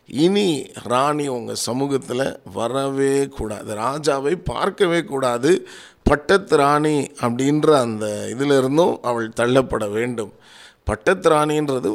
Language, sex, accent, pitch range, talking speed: Tamil, male, native, 115-145 Hz, 95 wpm